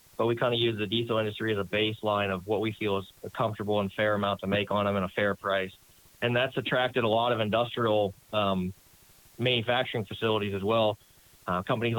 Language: English